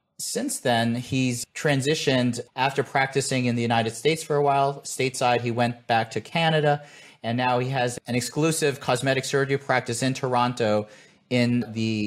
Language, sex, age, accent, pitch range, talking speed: English, male, 30-49, American, 115-140 Hz, 160 wpm